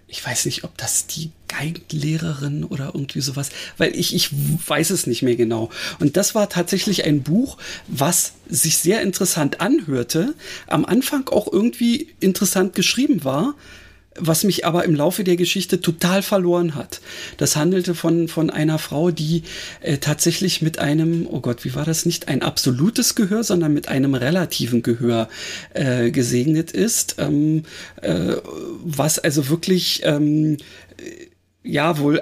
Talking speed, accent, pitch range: 155 wpm, German, 145-180 Hz